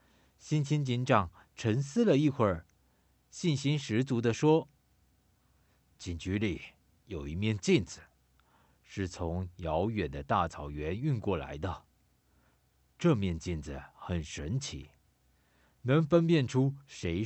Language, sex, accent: Chinese, male, native